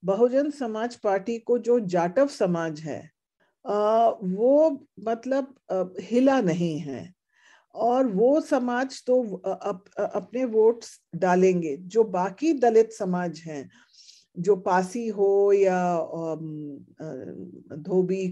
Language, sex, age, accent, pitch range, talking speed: Hindi, female, 50-69, native, 180-235 Hz, 100 wpm